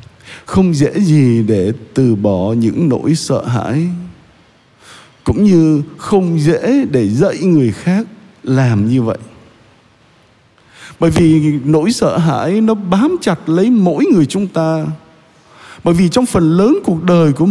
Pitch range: 135-195 Hz